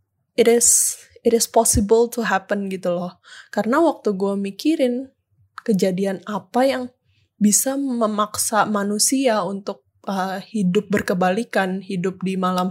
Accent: native